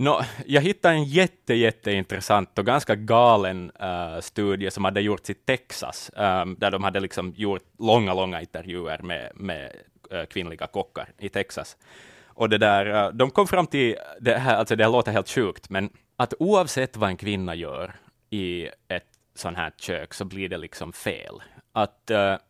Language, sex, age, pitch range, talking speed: Swedish, male, 20-39, 95-120 Hz, 175 wpm